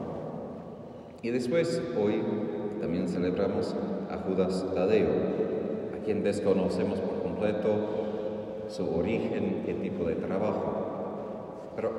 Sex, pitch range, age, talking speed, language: male, 95-135 Hz, 40-59, 100 wpm, Spanish